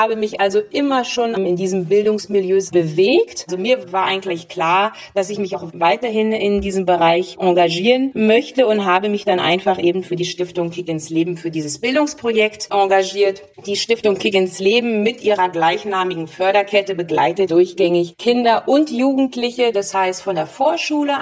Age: 40-59